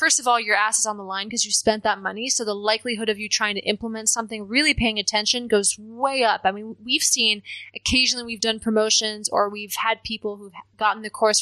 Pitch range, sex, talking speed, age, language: 205-240 Hz, female, 235 wpm, 20-39, English